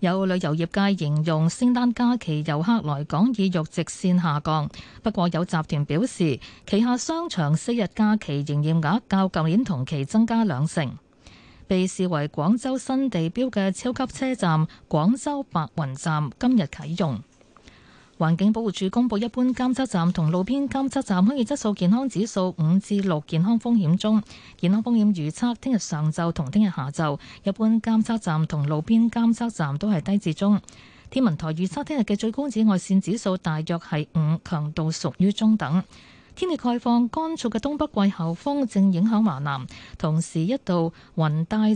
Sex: female